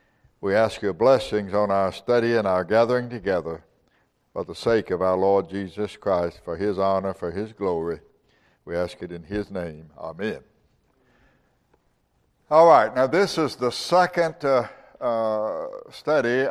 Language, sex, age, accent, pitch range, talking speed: English, male, 60-79, American, 110-140 Hz, 155 wpm